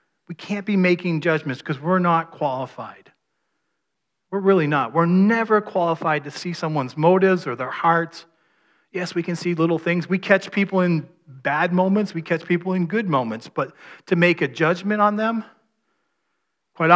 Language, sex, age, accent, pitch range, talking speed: English, male, 40-59, American, 140-185 Hz, 170 wpm